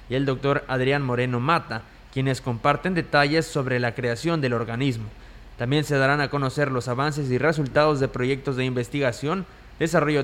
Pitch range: 125-150 Hz